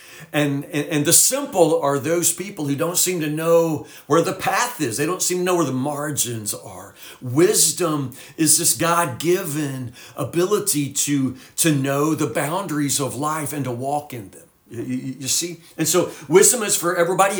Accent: American